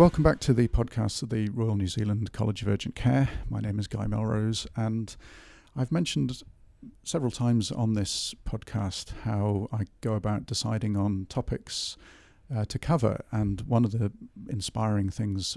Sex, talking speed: male, 165 wpm